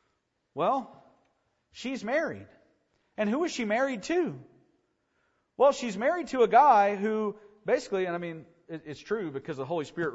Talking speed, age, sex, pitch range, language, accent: 155 wpm, 40-59, male, 175-245 Hz, English, American